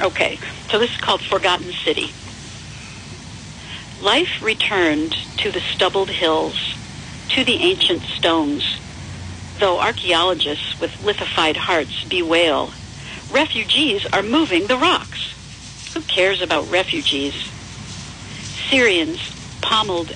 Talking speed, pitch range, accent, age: 100 wpm, 160-215 Hz, American, 60-79